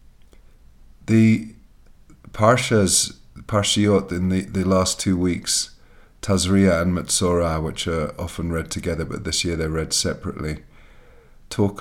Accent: British